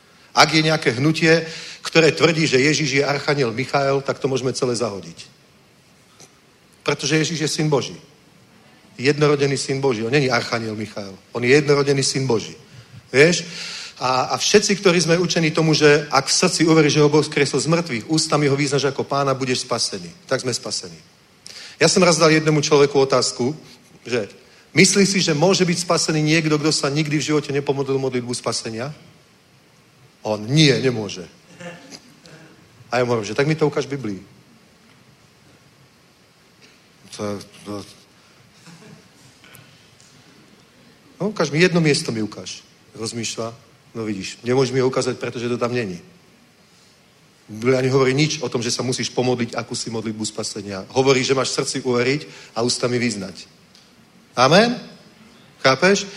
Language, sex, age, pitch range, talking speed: Czech, male, 40-59, 120-155 Hz, 150 wpm